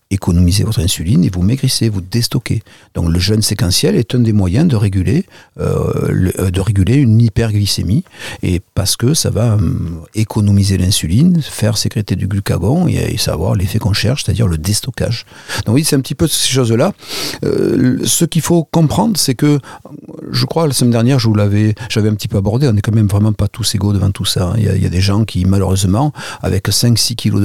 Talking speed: 215 wpm